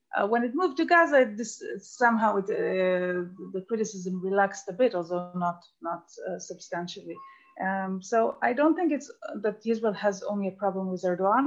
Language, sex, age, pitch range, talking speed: Turkish, female, 30-49, 180-220 Hz, 180 wpm